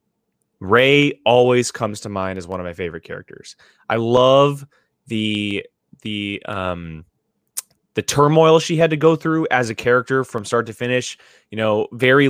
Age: 20-39